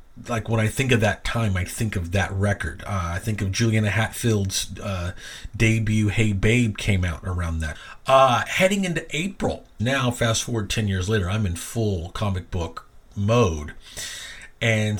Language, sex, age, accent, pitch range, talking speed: English, male, 40-59, American, 95-120 Hz, 170 wpm